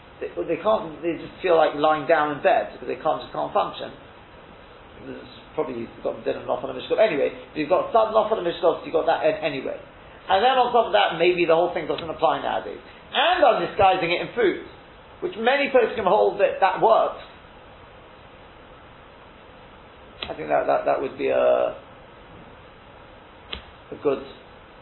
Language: English